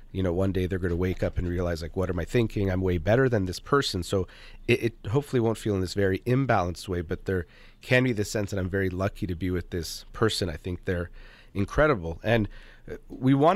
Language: English